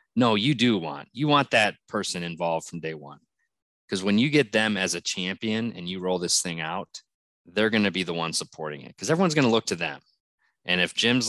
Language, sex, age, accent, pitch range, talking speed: English, male, 20-39, American, 90-110 Hz, 235 wpm